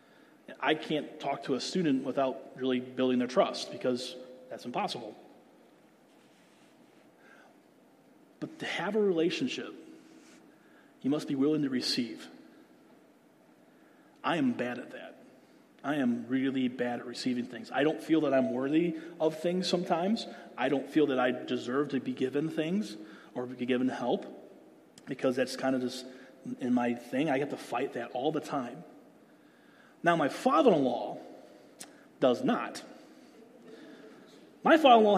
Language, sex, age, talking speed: English, male, 30-49, 140 wpm